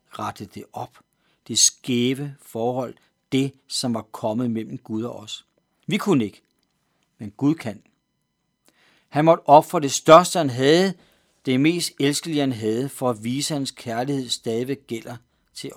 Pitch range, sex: 125-175 Hz, male